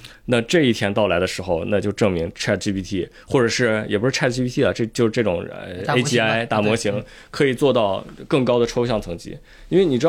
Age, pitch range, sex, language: 20-39, 105-140 Hz, male, Chinese